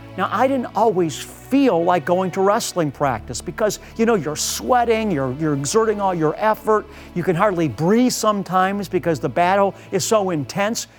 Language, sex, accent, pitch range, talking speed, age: English, male, American, 180-235 Hz, 175 wpm, 50-69